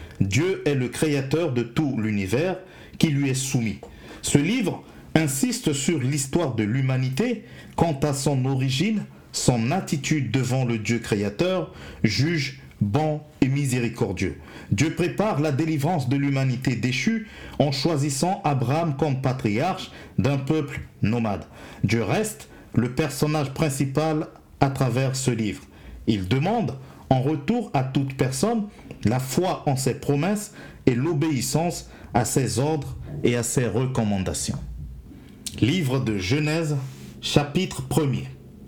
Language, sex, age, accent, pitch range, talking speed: French, male, 50-69, French, 120-160 Hz, 125 wpm